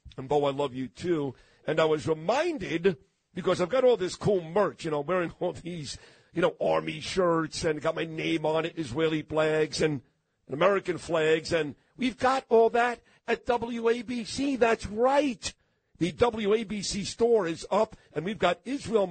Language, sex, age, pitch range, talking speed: English, male, 50-69, 155-200 Hz, 175 wpm